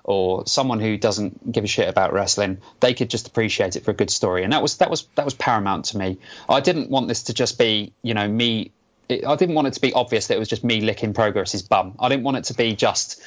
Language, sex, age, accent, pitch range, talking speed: English, male, 20-39, British, 100-125 Hz, 270 wpm